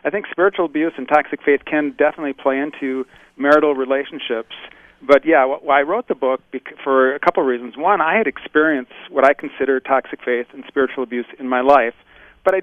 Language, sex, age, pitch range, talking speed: English, male, 40-59, 130-155 Hz, 200 wpm